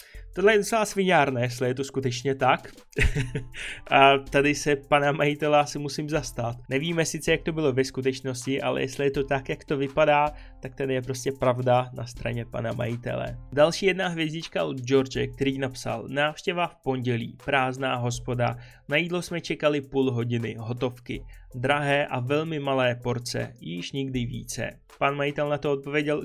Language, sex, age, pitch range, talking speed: Czech, male, 20-39, 125-150 Hz, 165 wpm